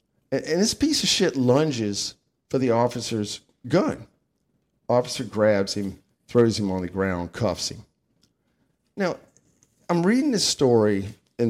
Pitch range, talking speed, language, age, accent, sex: 100-155 Hz, 135 wpm, English, 50-69, American, male